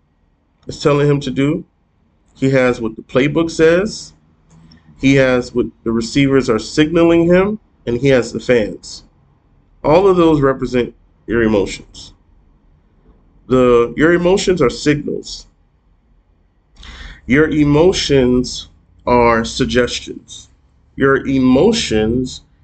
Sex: male